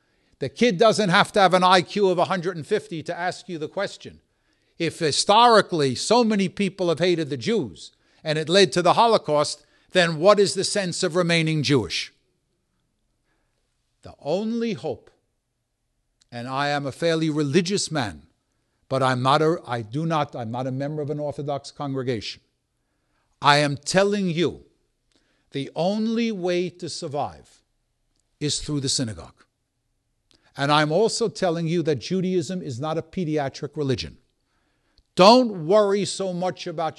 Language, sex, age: English, male, 60-79